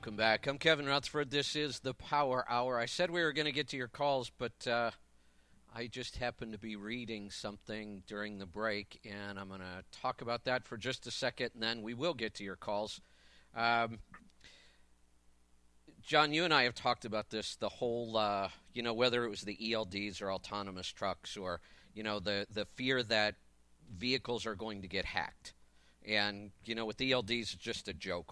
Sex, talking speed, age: male, 200 wpm, 50-69